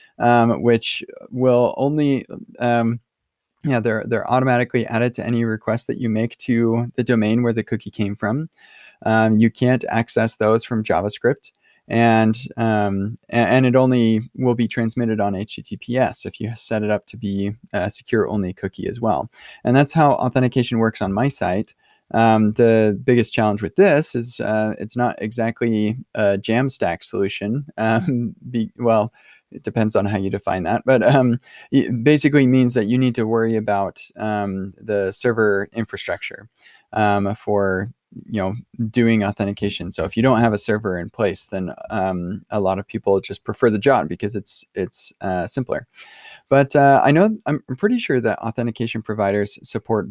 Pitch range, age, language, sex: 105-120 Hz, 20-39, English, male